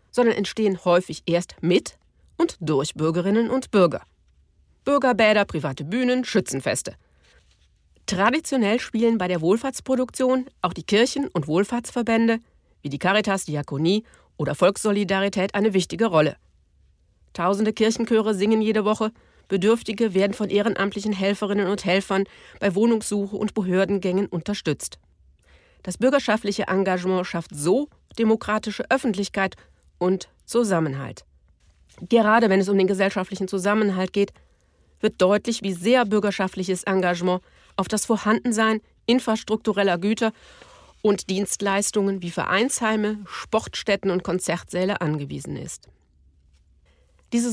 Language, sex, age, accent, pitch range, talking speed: German, female, 40-59, German, 175-220 Hz, 110 wpm